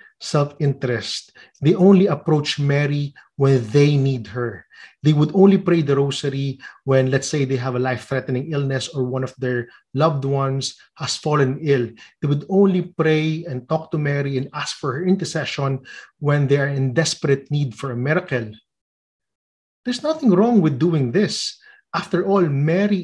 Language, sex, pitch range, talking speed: English, male, 135-180 Hz, 165 wpm